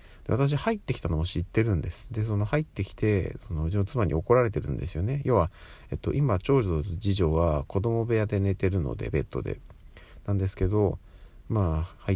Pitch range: 80-110 Hz